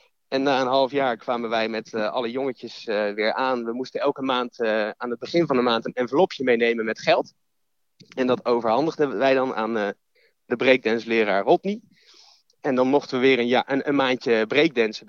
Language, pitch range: Dutch, 115-140 Hz